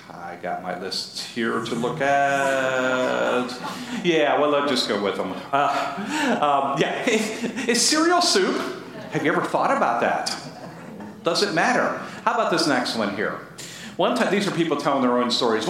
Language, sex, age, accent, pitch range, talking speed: English, male, 50-69, American, 175-275 Hz, 170 wpm